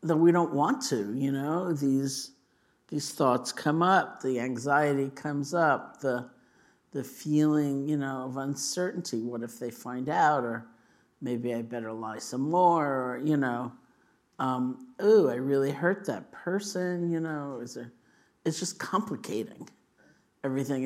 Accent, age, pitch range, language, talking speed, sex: American, 50-69, 125-150 Hz, English, 150 wpm, male